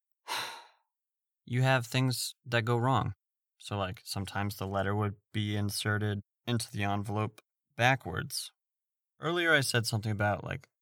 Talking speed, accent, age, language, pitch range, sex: 135 wpm, American, 20-39, English, 100-120 Hz, male